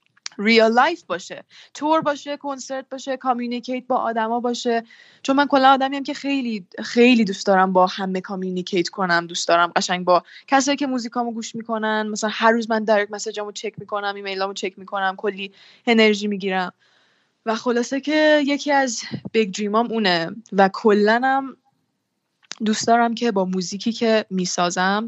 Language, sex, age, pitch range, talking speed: Persian, female, 20-39, 185-230 Hz, 155 wpm